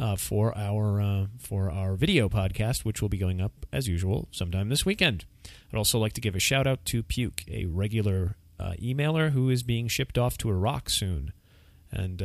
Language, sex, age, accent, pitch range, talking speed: English, male, 30-49, American, 95-135 Hz, 200 wpm